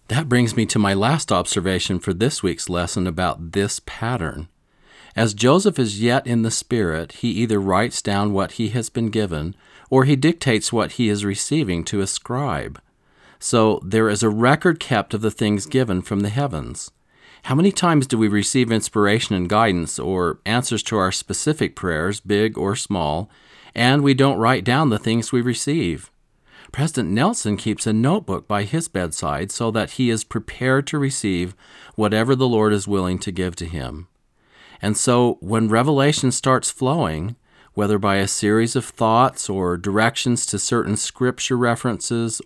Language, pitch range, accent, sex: English, 100-125 Hz, American, male